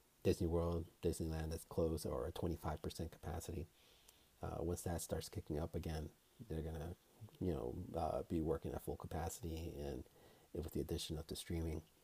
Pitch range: 80-105 Hz